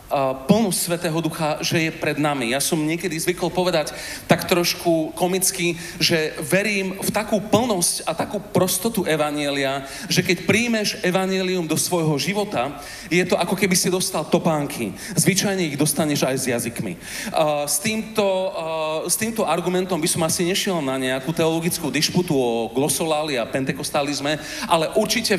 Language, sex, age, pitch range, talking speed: Slovak, male, 40-59, 150-190 Hz, 150 wpm